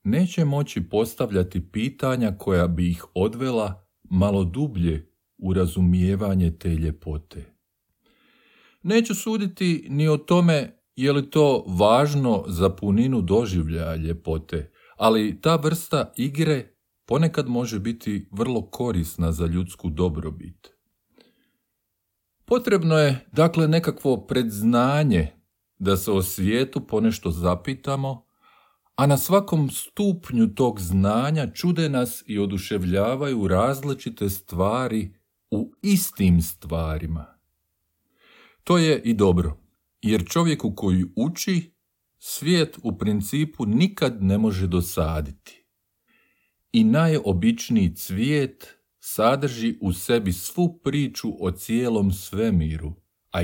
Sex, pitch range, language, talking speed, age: male, 90-140 Hz, Croatian, 105 wpm, 40-59